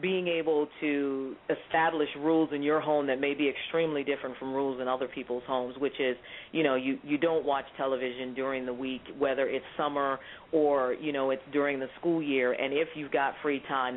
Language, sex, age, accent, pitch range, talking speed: English, female, 40-59, American, 130-150 Hz, 205 wpm